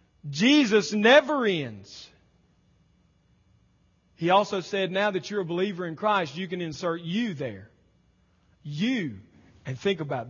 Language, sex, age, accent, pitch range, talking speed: English, male, 40-59, American, 150-200 Hz, 130 wpm